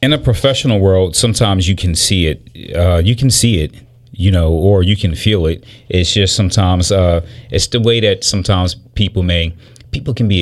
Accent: American